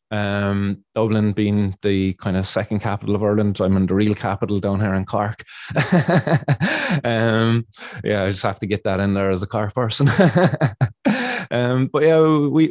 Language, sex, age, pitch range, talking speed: English, male, 20-39, 105-140 Hz, 180 wpm